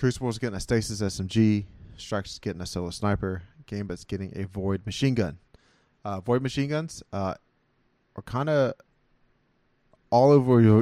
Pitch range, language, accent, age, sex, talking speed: 100-125 Hz, English, American, 20-39, male, 145 wpm